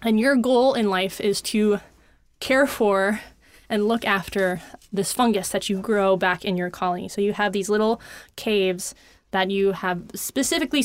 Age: 20-39